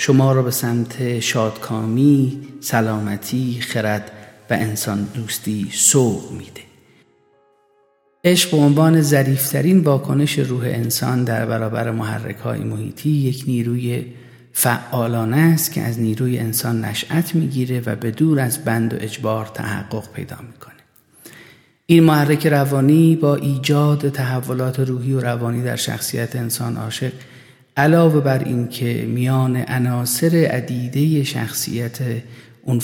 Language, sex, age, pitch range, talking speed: Persian, male, 40-59, 115-140 Hz, 115 wpm